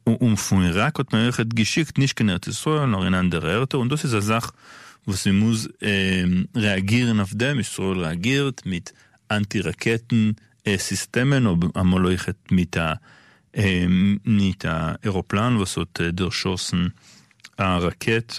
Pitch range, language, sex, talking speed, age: 95-110 Hz, Hebrew, male, 90 wpm, 40-59